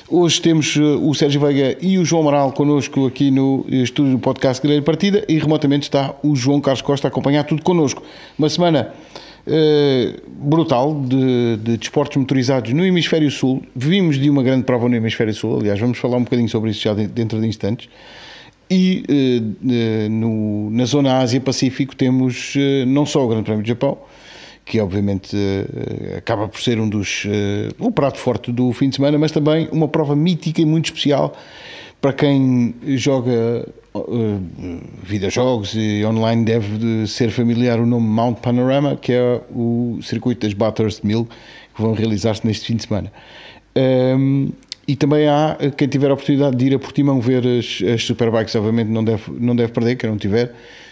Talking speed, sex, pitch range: 175 wpm, male, 115-145 Hz